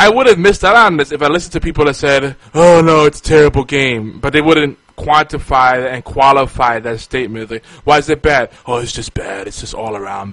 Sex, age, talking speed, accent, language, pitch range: male, 20-39, 240 wpm, American, English, 120-160 Hz